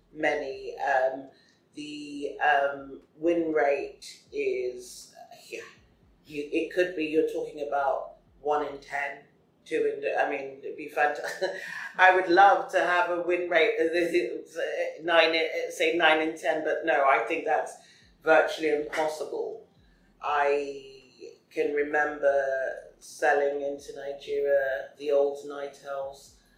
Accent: British